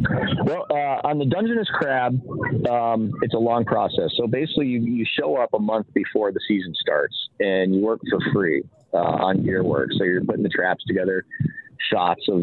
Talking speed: 190 wpm